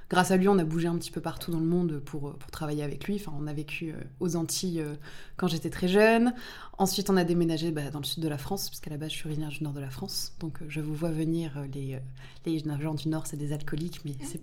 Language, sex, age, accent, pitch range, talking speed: French, female, 20-39, French, 150-185 Hz, 270 wpm